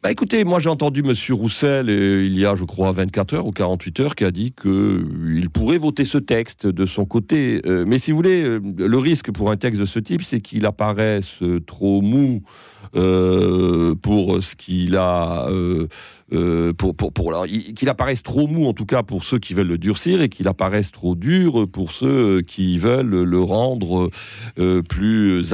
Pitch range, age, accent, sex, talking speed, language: 90-120 Hz, 40-59, French, male, 190 wpm, French